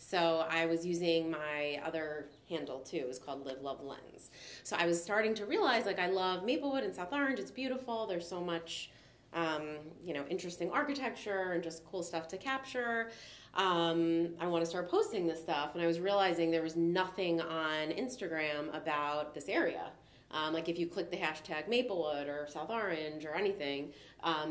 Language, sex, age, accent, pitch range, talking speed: English, female, 30-49, American, 160-195 Hz, 190 wpm